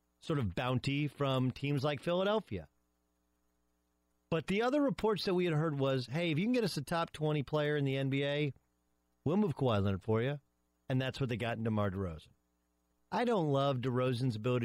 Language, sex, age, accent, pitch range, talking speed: English, male, 40-59, American, 100-155 Hz, 195 wpm